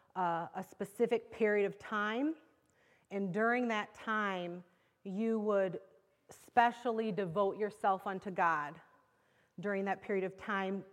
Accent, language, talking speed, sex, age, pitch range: American, English, 120 wpm, female, 30-49, 180-215 Hz